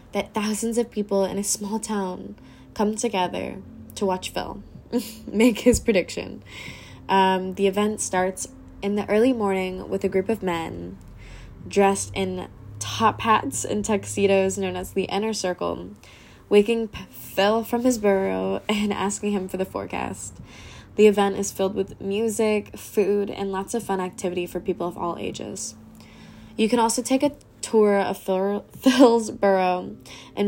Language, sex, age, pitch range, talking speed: English, female, 10-29, 185-225 Hz, 155 wpm